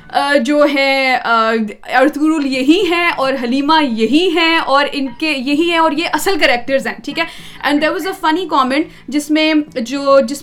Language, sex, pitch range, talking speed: Urdu, female, 240-315 Hz, 165 wpm